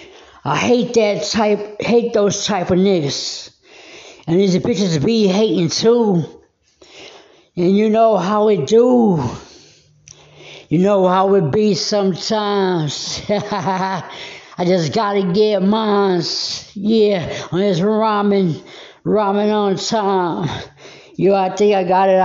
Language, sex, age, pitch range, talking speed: English, female, 60-79, 175-210 Hz, 125 wpm